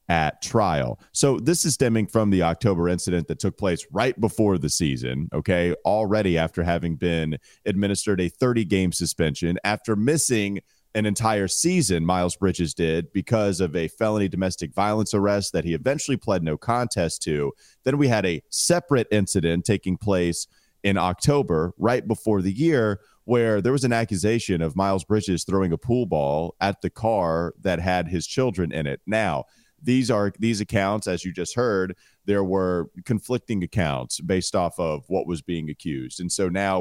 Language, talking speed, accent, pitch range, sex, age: English, 175 wpm, American, 85-110 Hz, male, 30-49